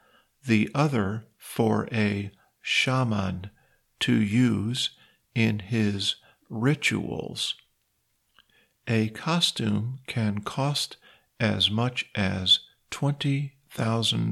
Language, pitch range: Thai, 105-130 Hz